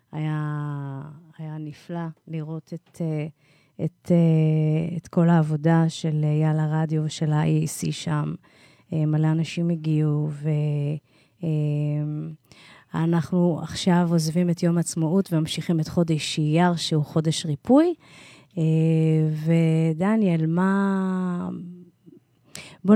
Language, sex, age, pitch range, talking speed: English, female, 30-49, 155-180 Hz, 90 wpm